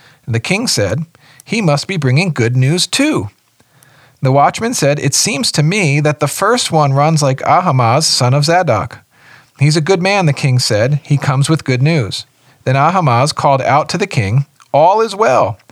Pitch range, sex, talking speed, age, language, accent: 125-160 Hz, male, 185 wpm, 40-59, English, American